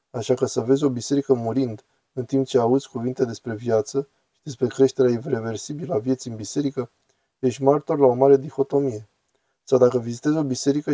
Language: Romanian